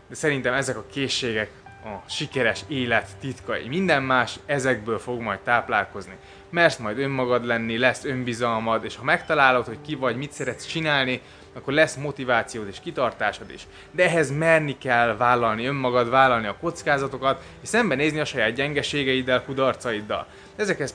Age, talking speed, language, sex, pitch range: 20-39, 155 wpm, Hungarian, male, 115-145 Hz